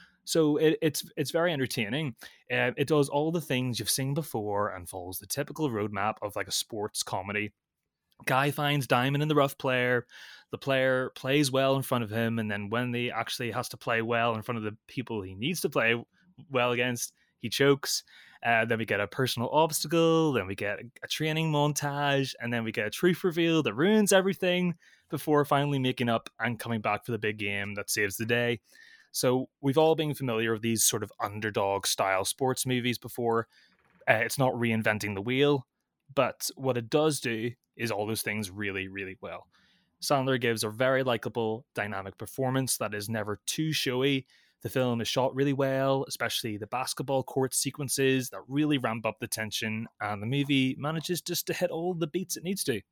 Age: 20-39